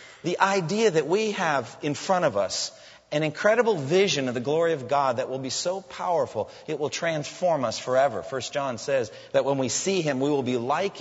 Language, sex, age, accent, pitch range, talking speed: English, male, 40-59, American, 140-190 Hz, 215 wpm